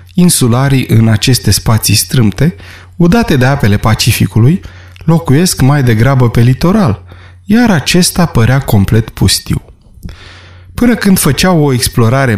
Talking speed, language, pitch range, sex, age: 115 wpm, Romanian, 105-150 Hz, male, 20-39